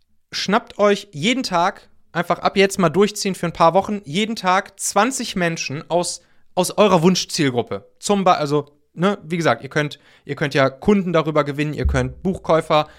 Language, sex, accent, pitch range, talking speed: German, male, German, 145-190 Hz, 180 wpm